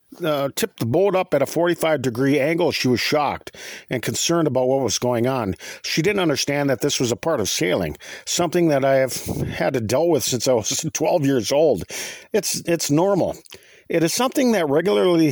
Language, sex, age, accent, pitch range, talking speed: English, male, 50-69, American, 135-185 Hz, 205 wpm